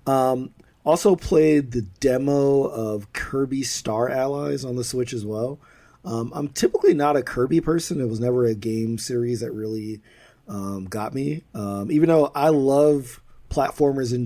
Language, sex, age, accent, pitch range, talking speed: English, male, 30-49, American, 115-140 Hz, 165 wpm